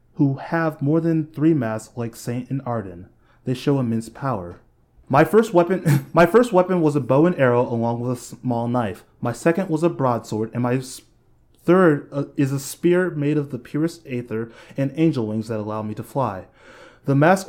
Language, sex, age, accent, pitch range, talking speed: English, male, 20-39, American, 120-155 Hz, 190 wpm